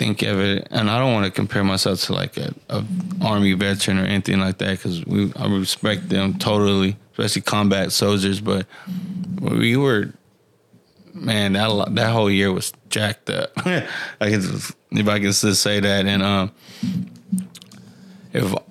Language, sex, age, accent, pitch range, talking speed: English, male, 20-39, American, 100-110 Hz, 165 wpm